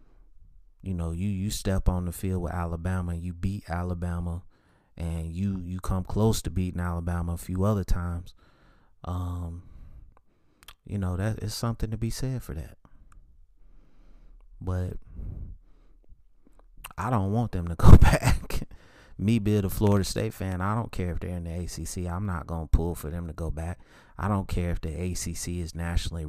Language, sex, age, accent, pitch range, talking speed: English, male, 30-49, American, 85-105 Hz, 170 wpm